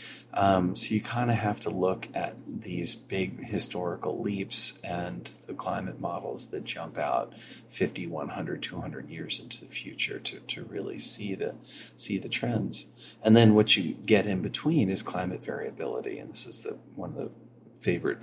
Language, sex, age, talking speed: English, male, 40-59, 175 wpm